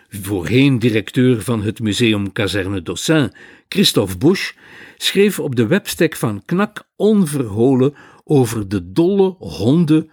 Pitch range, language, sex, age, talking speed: 115-150 Hz, Dutch, male, 60-79, 120 wpm